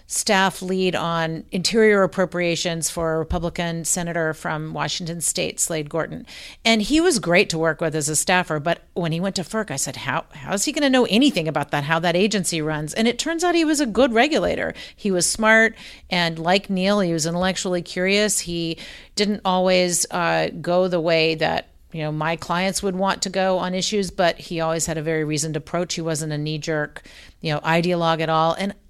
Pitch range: 160-200 Hz